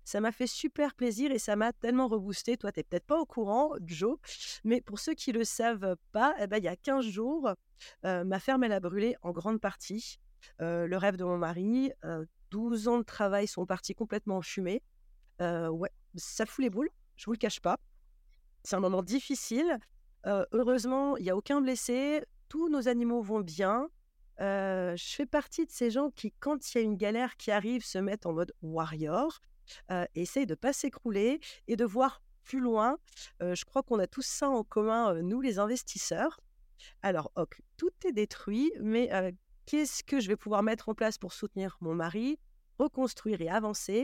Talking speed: 210 wpm